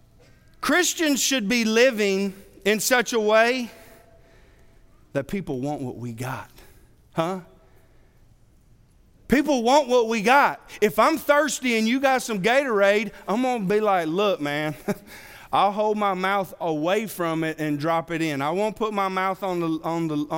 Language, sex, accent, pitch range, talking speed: English, male, American, 185-250 Hz, 160 wpm